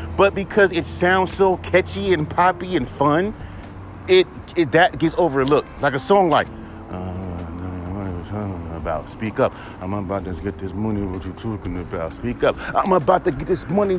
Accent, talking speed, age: American, 175 wpm, 30-49